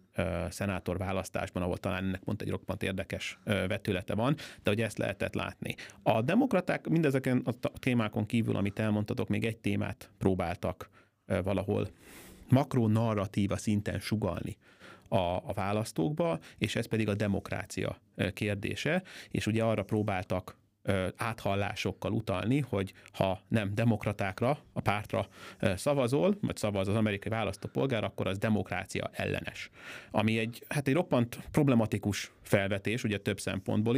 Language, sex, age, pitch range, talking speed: Hungarian, male, 30-49, 100-115 Hz, 130 wpm